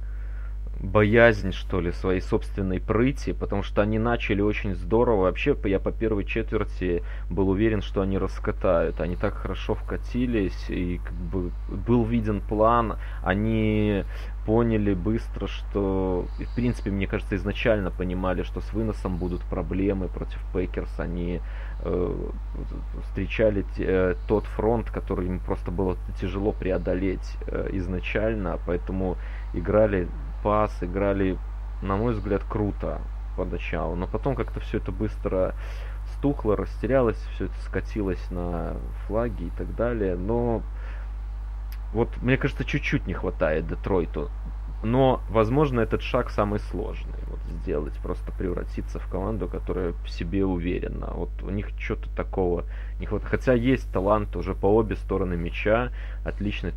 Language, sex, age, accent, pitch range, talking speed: Russian, male, 20-39, native, 90-110 Hz, 135 wpm